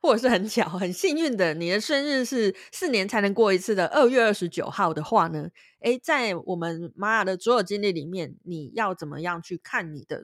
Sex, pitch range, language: female, 170-230 Hz, Chinese